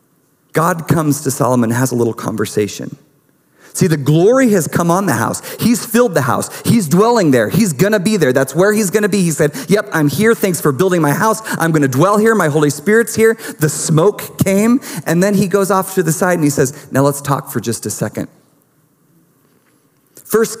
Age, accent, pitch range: 40-59, American, 140-195 Hz